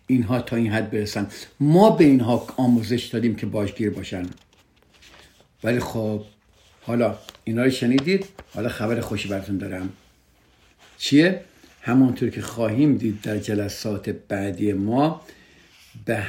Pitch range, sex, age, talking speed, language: 105-135 Hz, male, 50-69, 125 wpm, Persian